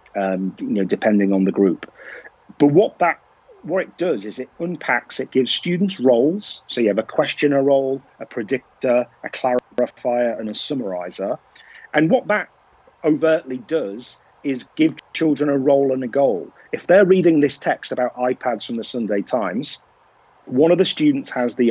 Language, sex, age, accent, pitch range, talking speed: English, male, 40-59, British, 115-155 Hz, 175 wpm